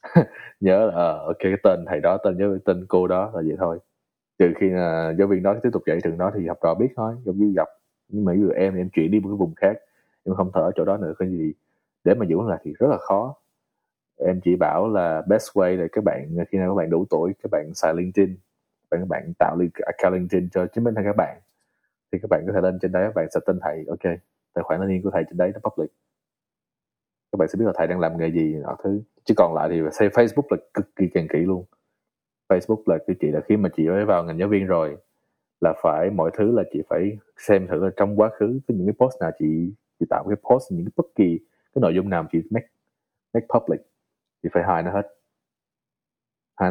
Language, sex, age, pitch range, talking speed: Vietnamese, male, 20-39, 90-105 Hz, 255 wpm